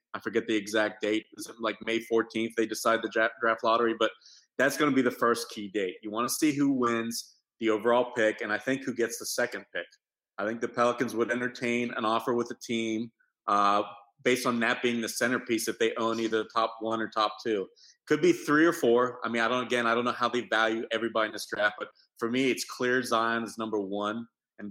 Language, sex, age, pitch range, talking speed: English, male, 30-49, 110-120 Hz, 240 wpm